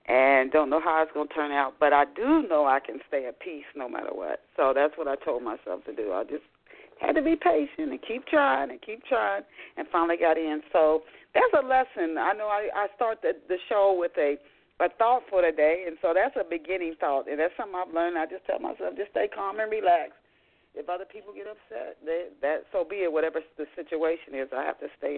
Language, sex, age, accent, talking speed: English, female, 40-59, American, 245 wpm